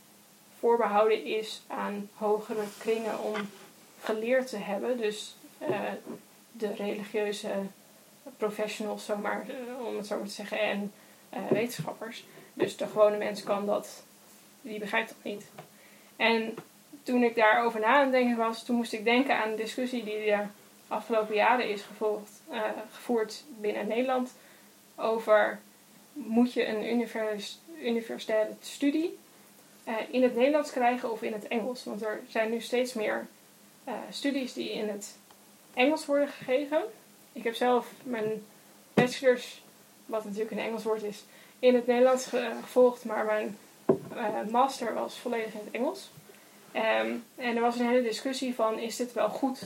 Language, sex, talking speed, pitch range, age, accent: Dutch, female, 150 wpm, 215-250 Hz, 10-29, Dutch